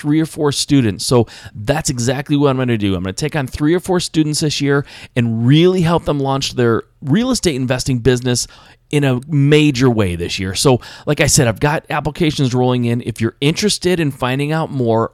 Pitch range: 115-150 Hz